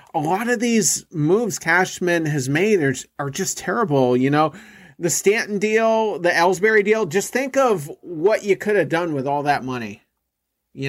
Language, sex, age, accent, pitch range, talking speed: English, male, 30-49, American, 140-180 Hz, 180 wpm